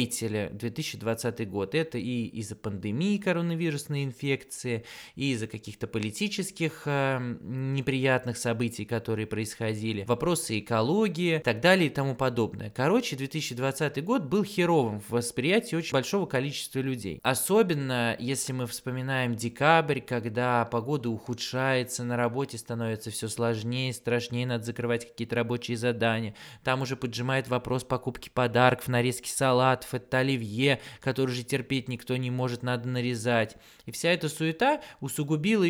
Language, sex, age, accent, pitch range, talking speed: Russian, male, 20-39, native, 120-155 Hz, 130 wpm